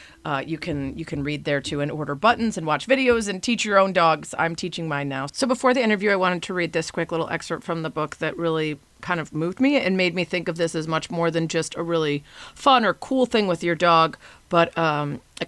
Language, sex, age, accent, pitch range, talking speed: English, female, 40-59, American, 155-185 Hz, 260 wpm